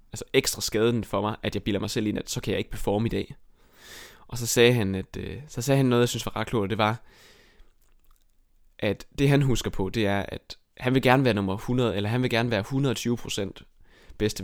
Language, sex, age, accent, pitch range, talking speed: Danish, male, 20-39, native, 100-115 Hz, 245 wpm